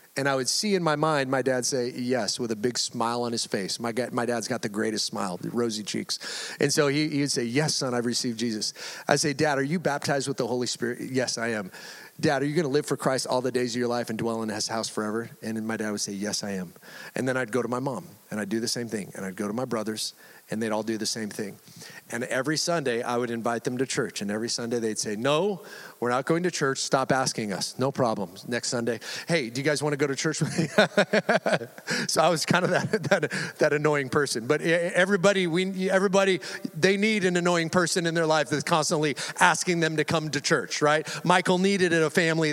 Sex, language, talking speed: male, English, 250 wpm